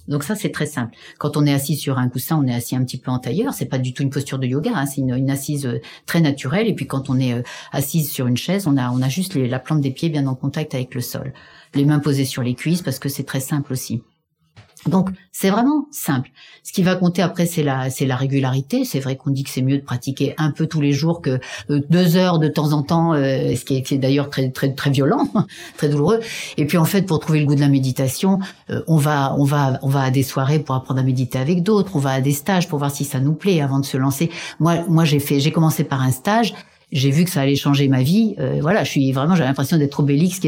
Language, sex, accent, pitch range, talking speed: French, female, French, 135-170 Hz, 275 wpm